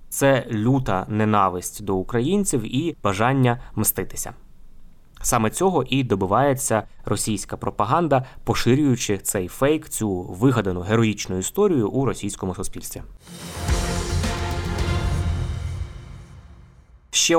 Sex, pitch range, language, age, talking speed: male, 105-130 Hz, Ukrainian, 20-39, 85 wpm